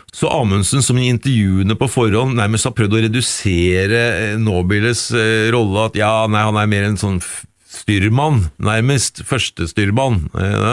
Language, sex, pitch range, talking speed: English, male, 95-120 Hz, 160 wpm